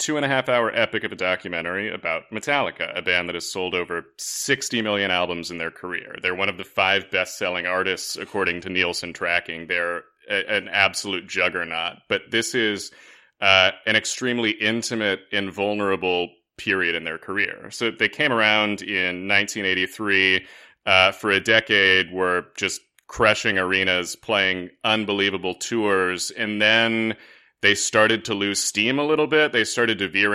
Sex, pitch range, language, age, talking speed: male, 95-110 Hz, English, 30-49, 165 wpm